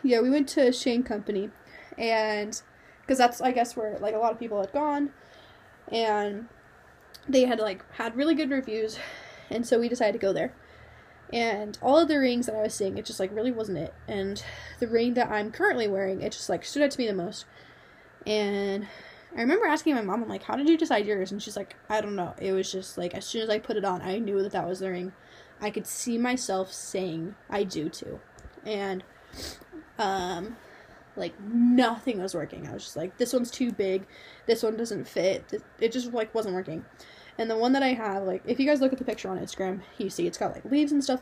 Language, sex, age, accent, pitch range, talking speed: English, female, 10-29, American, 200-255 Hz, 225 wpm